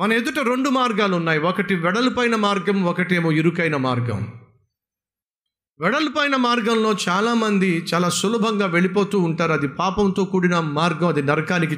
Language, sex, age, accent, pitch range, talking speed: Telugu, male, 50-69, native, 165-220 Hz, 140 wpm